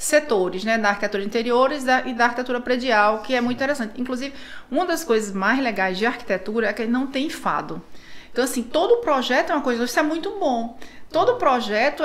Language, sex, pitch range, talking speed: Portuguese, female, 215-265 Hz, 195 wpm